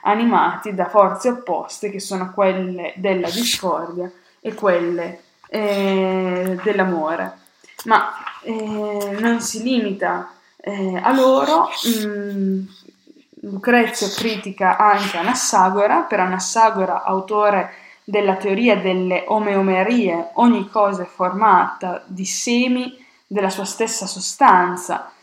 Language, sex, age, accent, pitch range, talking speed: Italian, female, 20-39, native, 185-230 Hz, 100 wpm